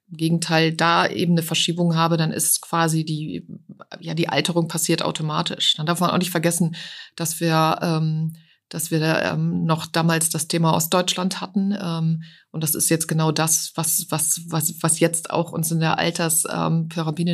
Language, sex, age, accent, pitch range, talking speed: German, female, 30-49, German, 160-170 Hz, 180 wpm